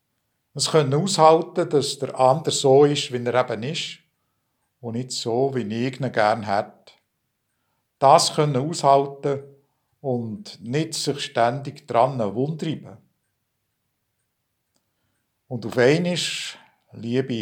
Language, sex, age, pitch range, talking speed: German, male, 60-79, 120-150 Hz, 115 wpm